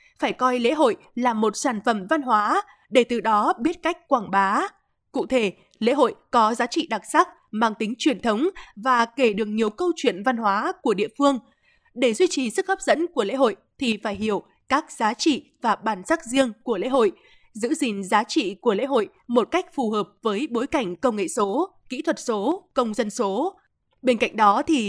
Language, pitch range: Vietnamese, 220-315 Hz